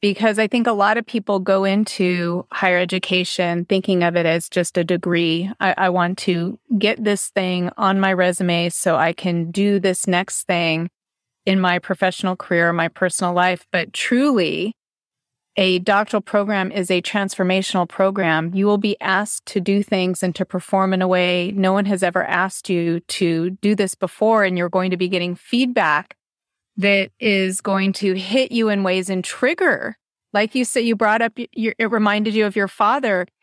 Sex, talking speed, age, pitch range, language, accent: female, 185 wpm, 30-49, 185-230 Hz, English, American